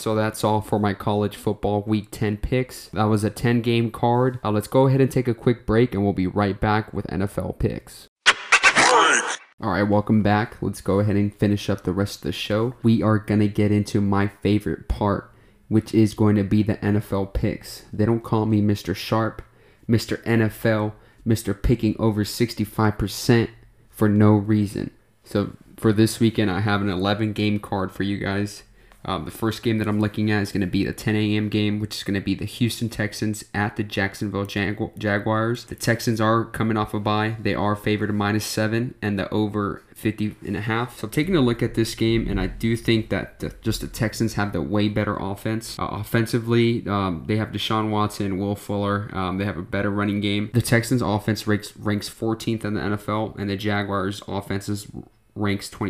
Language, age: English, 20-39